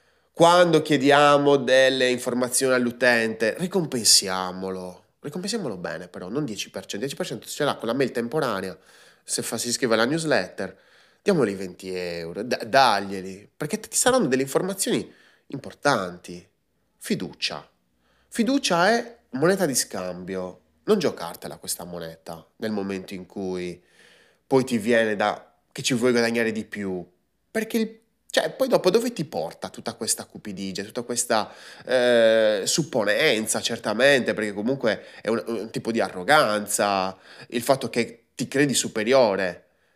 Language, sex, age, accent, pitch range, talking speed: Italian, male, 20-39, native, 95-145 Hz, 135 wpm